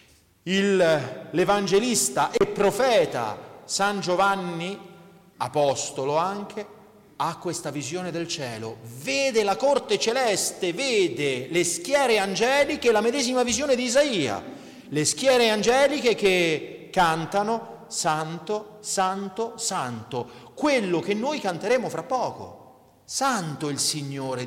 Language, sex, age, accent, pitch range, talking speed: Italian, male, 40-59, native, 165-240 Hz, 105 wpm